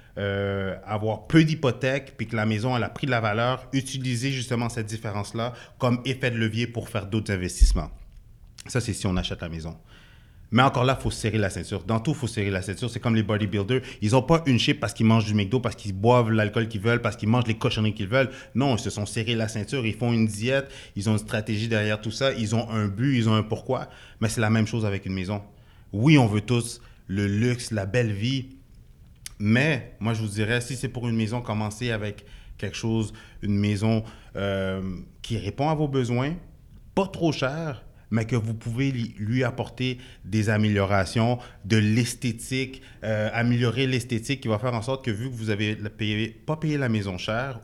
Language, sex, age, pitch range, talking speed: French, male, 30-49, 105-125 Hz, 215 wpm